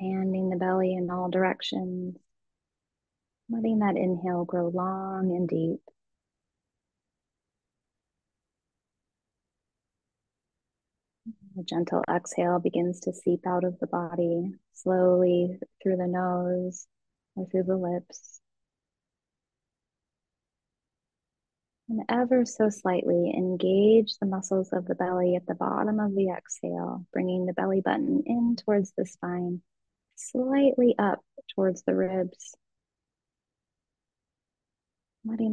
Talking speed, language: 105 wpm, English